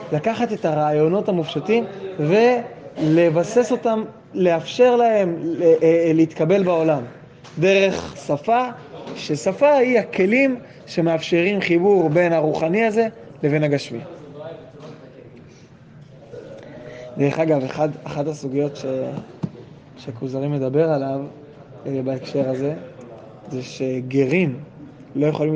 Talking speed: 85 wpm